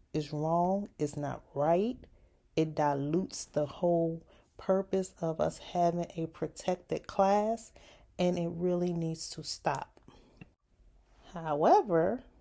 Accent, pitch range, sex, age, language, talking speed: American, 175-225 Hz, female, 30-49, English, 110 wpm